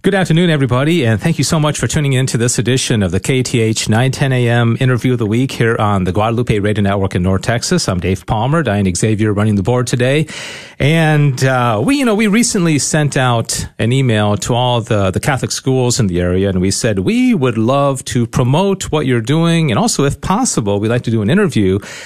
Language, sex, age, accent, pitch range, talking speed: English, male, 40-59, American, 110-150 Hz, 225 wpm